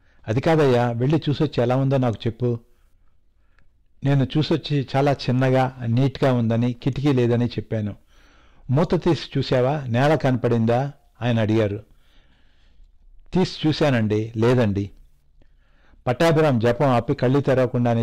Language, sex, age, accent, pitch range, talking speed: Telugu, male, 60-79, native, 105-135 Hz, 105 wpm